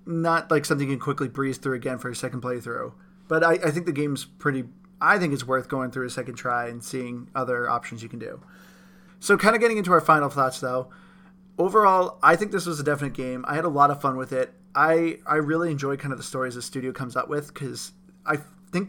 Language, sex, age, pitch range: English, male, 20-39, 130-170 Hz